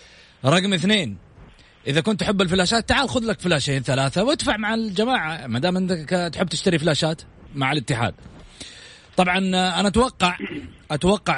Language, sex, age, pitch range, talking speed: English, male, 30-49, 130-185 Hz, 130 wpm